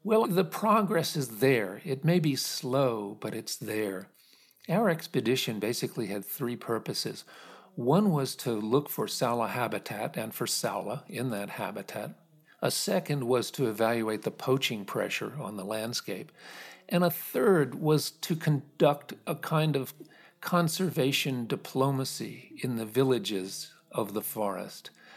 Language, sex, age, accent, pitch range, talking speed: English, male, 50-69, American, 120-165 Hz, 140 wpm